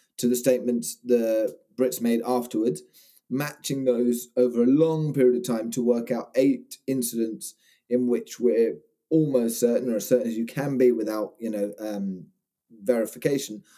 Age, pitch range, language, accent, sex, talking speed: 30-49, 115-130 Hz, English, British, male, 160 wpm